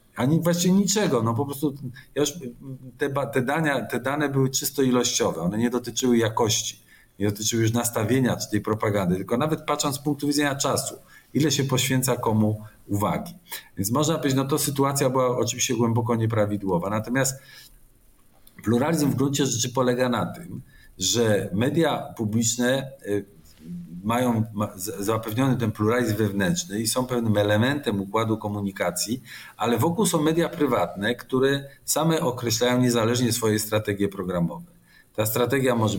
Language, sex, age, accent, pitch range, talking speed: Polish, male, 50-69, native, 110-135 Hz, 140 wpm